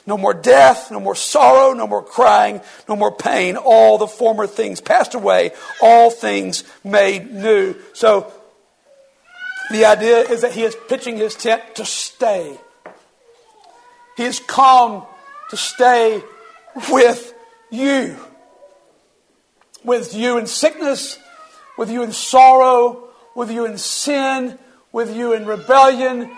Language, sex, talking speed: English, male, 130 wpm